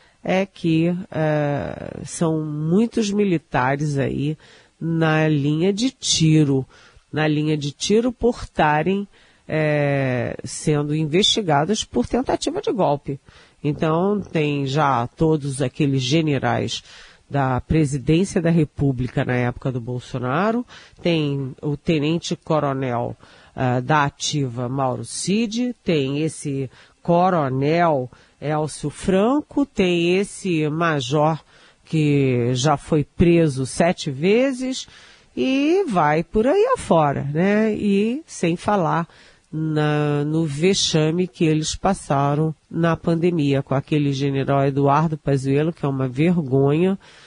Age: 40-59